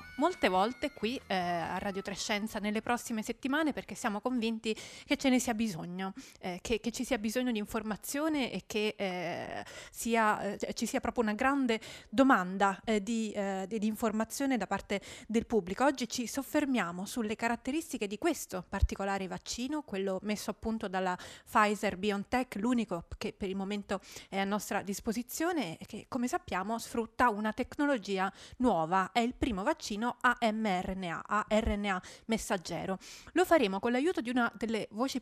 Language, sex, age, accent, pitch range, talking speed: Italian, female, 30-49, native, 200-250 Hz, 160 wpm